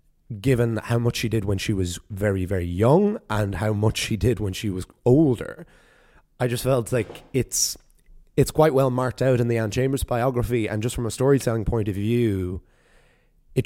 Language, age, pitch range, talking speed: English, 30-49, 100-125 Hz, 195 wpm